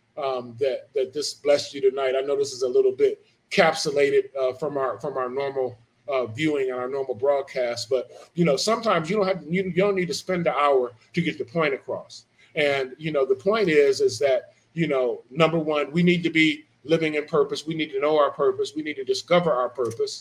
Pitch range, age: 140-190 Hz, 30-49